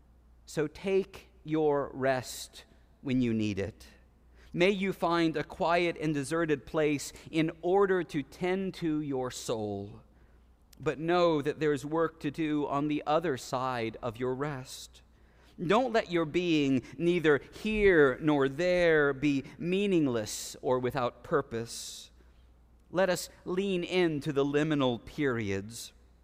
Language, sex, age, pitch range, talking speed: English, male, 40-59, 100-160 Hz, 135 wpm